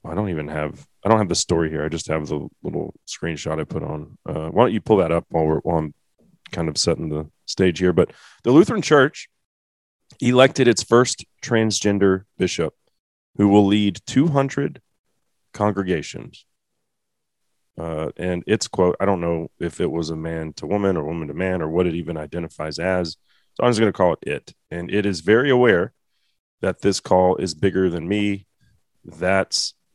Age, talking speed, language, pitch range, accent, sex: 30-49, 190 wpm, English, 85-105 Hz, American, male